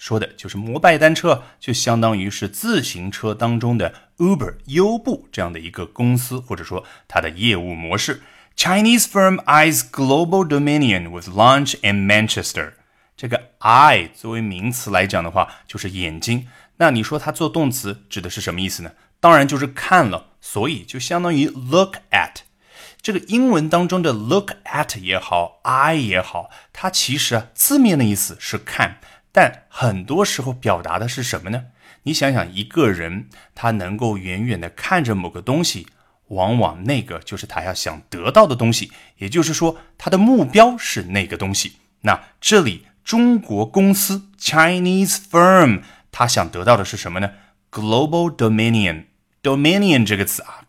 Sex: male